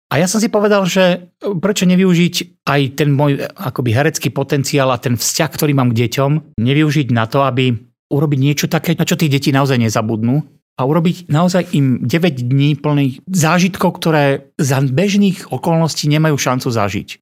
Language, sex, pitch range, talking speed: Slovak, male, 125-160 Hz, 170 wpm